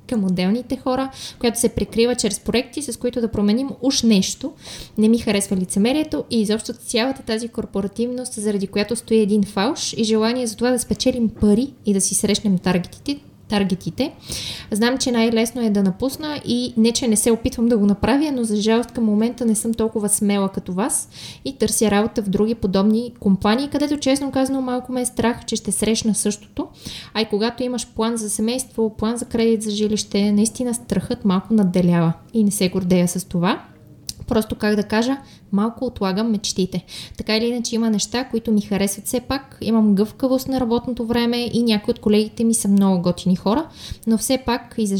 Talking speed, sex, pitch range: 190 wpm, female, 200-240 Hz